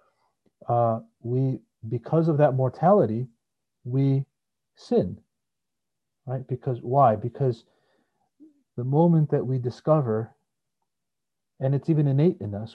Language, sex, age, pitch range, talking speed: English, male, 40-59, 110-135 Hz, 110 wpm